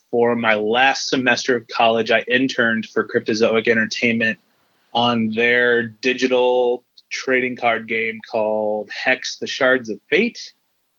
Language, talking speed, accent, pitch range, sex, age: English, 125 wpm, American, 115-130 Hz, male, 20-39